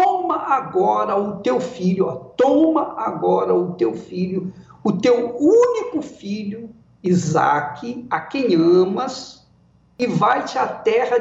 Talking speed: 110 wpm